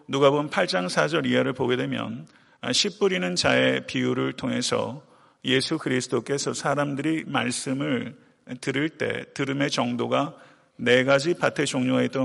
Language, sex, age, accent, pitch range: Korean, male, 40-59, native, 125-150 Hz